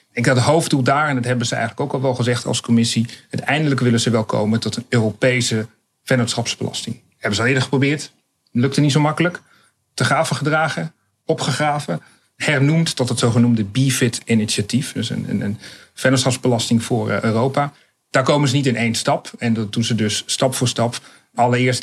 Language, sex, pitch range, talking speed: Dutch, male, 110-130 Hz, 190 wpm